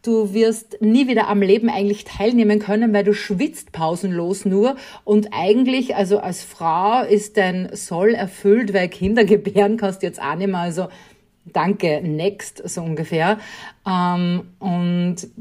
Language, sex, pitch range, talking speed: German, female, 185-220 Hz, 145 wpm